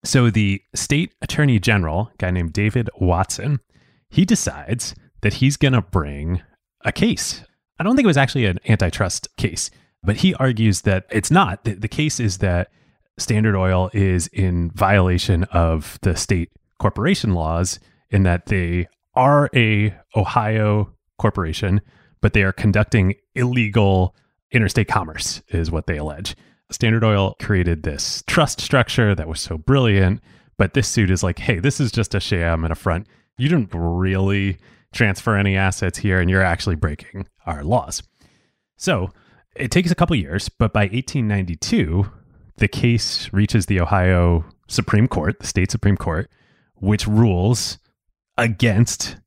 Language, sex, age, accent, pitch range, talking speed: English, male, 30-49, American, 95-115 Hz, 155 wpm